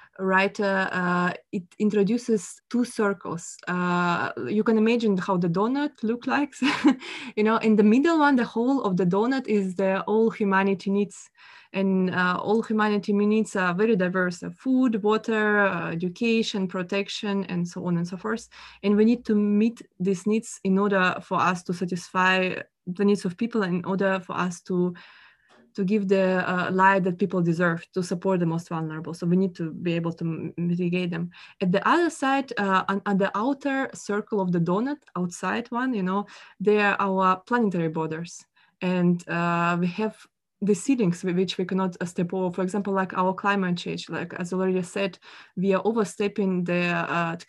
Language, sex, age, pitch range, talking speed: English, female, 20-39, 180-215 Hz, 180 wpm